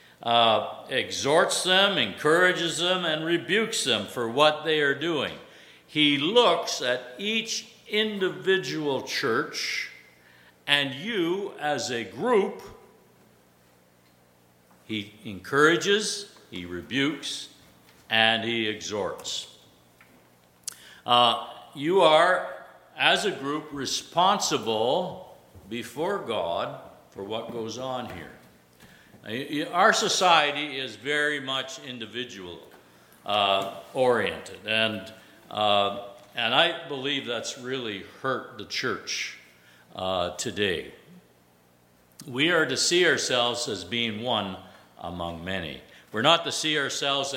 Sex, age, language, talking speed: male, 60-79, English, 100 wpm